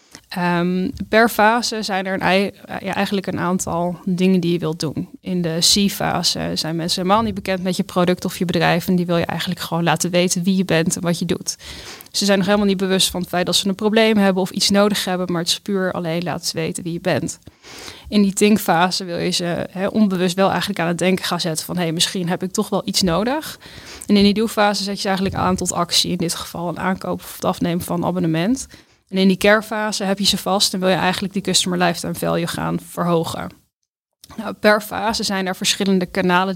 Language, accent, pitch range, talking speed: Dutch, Dutch, 175-200 Hz, 235 wpm